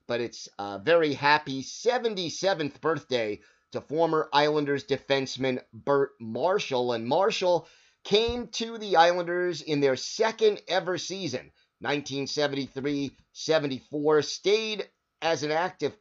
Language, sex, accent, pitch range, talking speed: English, male, American, 130-165 Hz, 110 wpm